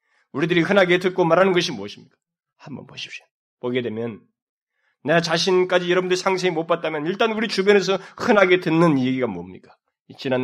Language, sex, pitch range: Korean, male, 125-180 Hz